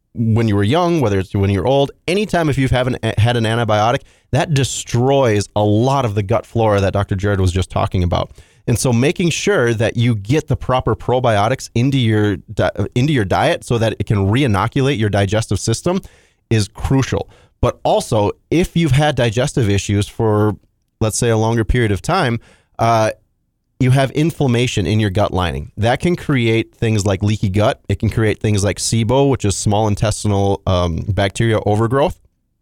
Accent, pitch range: American, 105-130 Hz